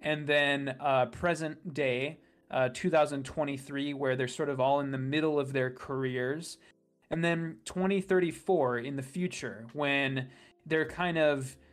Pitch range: 125-155 Hz